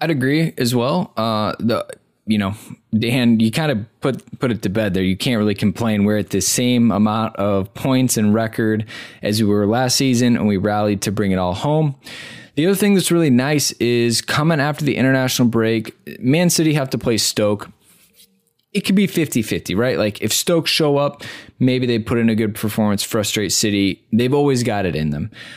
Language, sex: English, male